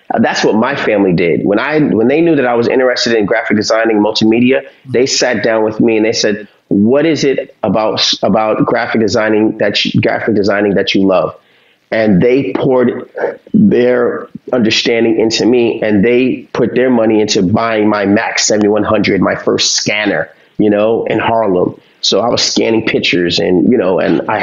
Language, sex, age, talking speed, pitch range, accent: English, male, 30-49, 180 wpm, 100-125 Hz, American